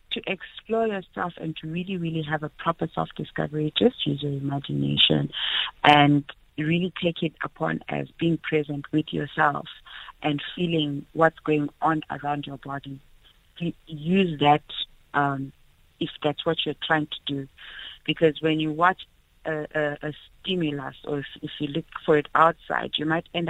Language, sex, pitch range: English, female, 145-170 Hz